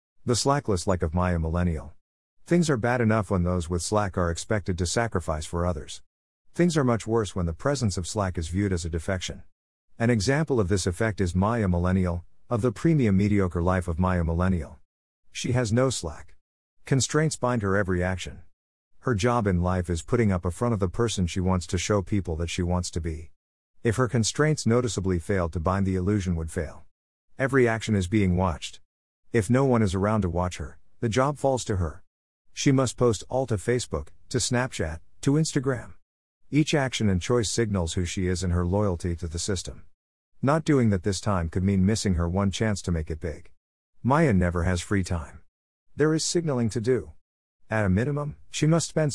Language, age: English, 50-69